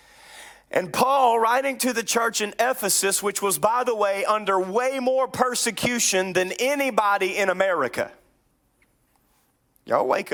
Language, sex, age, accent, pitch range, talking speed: English, male, 30-49, American, 170-230 Hz, 135 wpm